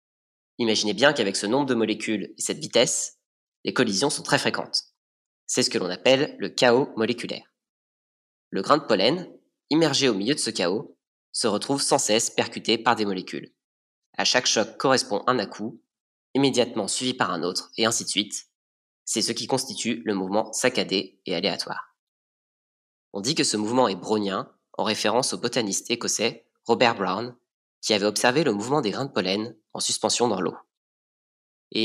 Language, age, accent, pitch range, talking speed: French, 20-39, French, 100-130 Hz, 175 wpm